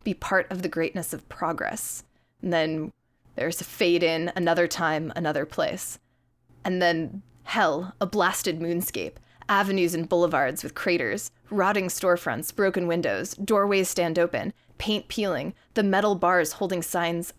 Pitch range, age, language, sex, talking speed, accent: 170-195 Hz, 20-39, English, female, 145 wpm, American